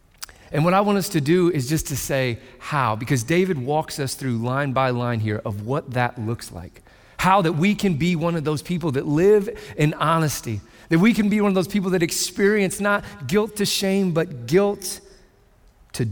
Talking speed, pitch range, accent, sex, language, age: 210 wpm, 125-180 Hz, American, male, English, 40-59